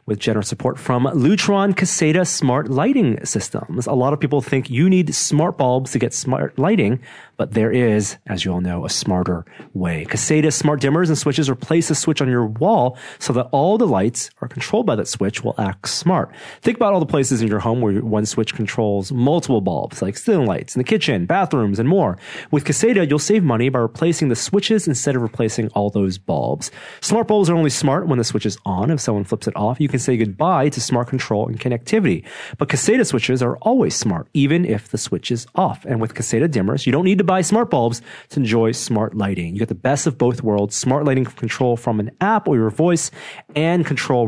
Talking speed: 220 wpm